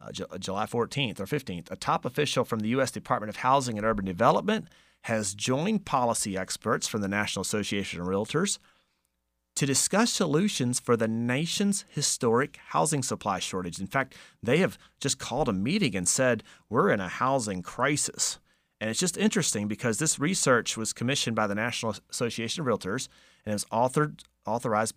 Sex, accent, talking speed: male, American, 170 wpm